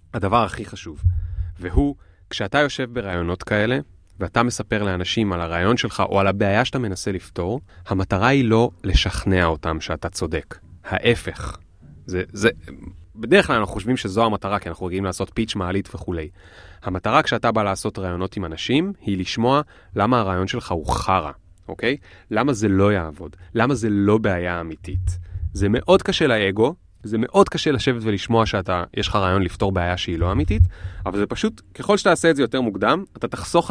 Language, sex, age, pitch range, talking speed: Hebrew, male, 30-49, 90-120 Hz, 175 wpm